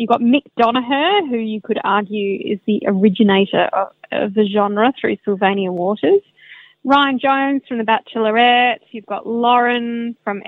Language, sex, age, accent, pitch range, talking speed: English, female, 20-39, Australian, 210-250 Hz, 155 wpm